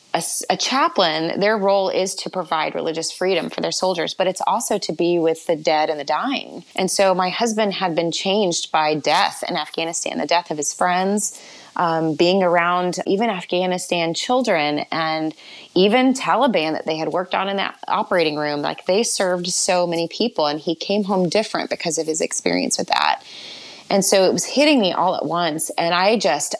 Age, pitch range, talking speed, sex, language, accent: 20-39, 165-210 Hz, 195 wpm, female, English, American